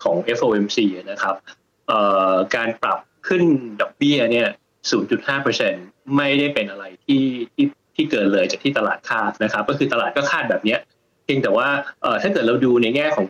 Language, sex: Thai, male